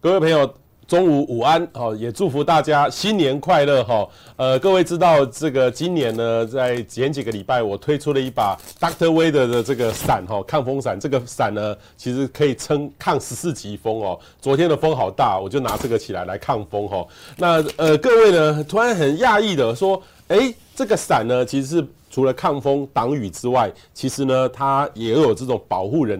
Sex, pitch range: male, 125-185 Hz